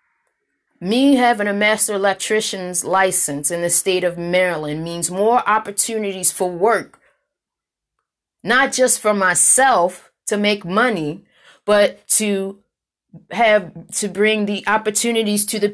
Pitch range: 195-250 Hz